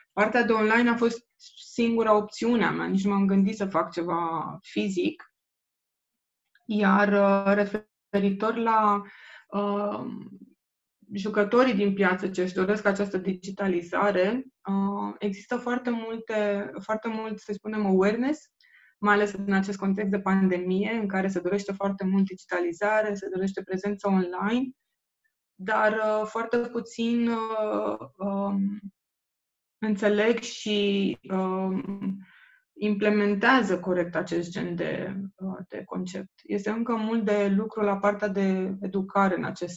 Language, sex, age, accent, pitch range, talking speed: Romanian, female, 20-39, native, 190-215 Hz, 125 wpm